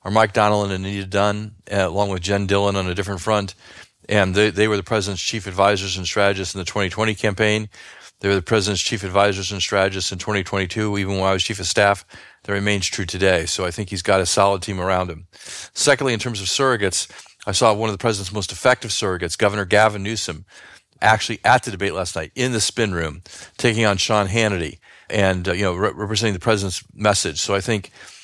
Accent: American